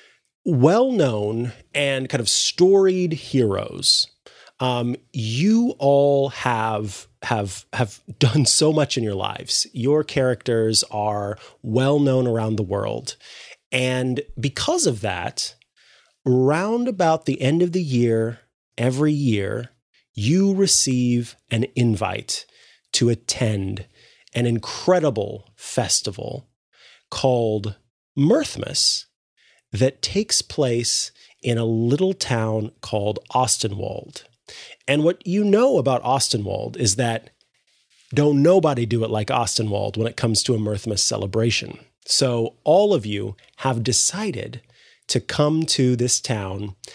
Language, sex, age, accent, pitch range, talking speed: English, male, 30-49, American, 110-145 Hz, 115 wpm